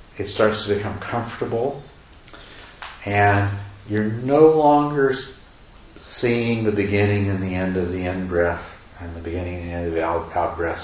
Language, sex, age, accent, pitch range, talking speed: English, male, 50-69, American, 85-105 Hz, 150 wpm